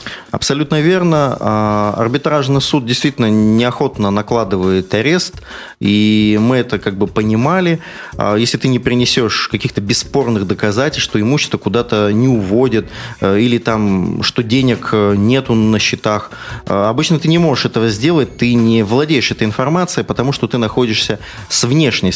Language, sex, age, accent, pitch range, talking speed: Russian, male, 30-49, native, 110-145 Hz, 135 wpm